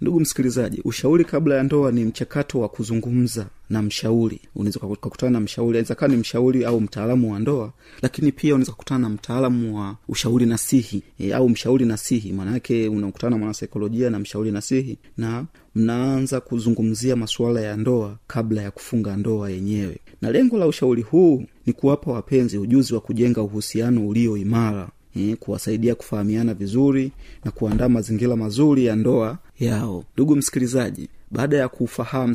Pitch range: 110-130 Hz